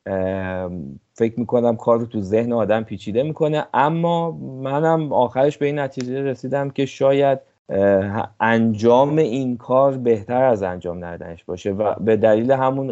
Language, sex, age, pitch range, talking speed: Persian, male, 30-49, 95-125 Hz, 140 wpm